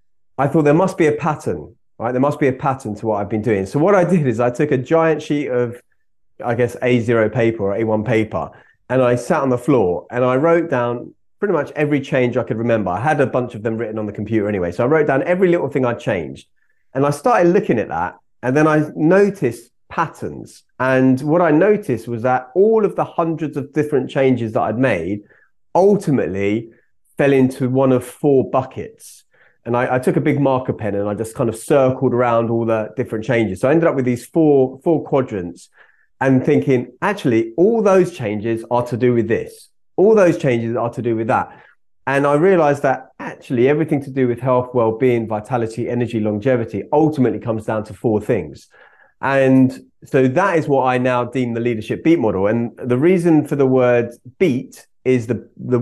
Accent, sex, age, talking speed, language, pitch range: British, male, 30-49, 210 wpm, English, 115-145 Hz